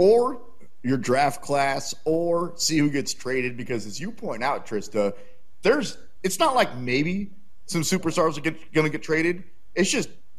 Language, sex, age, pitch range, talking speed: English, male, 30-49, 120-180 Hz, 170 wpm